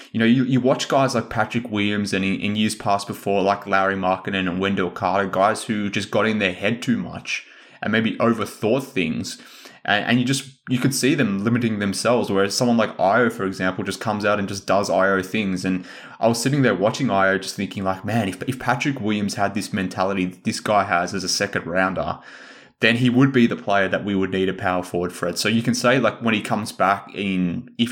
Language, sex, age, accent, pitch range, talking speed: English, male, 20-39, Australian, 95-115 Hz, 235 wpm